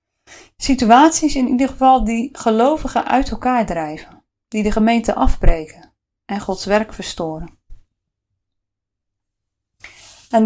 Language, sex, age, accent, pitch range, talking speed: Dutch, female, 30-49, Dutch, 170-235 Hz, 105 wpm